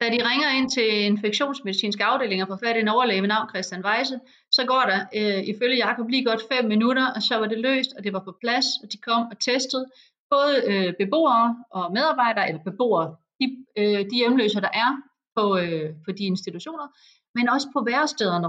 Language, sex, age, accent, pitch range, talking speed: English, female, 30-49, Danish, 195-245 Hz, 200 wpm